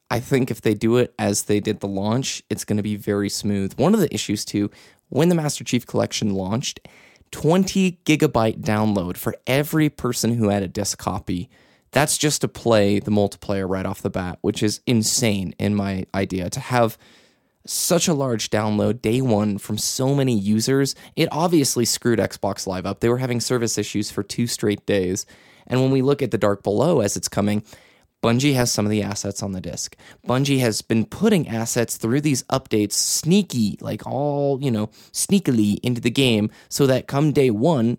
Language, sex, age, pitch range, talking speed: English, male, 20-39, 100-125 Hz, 195 wpm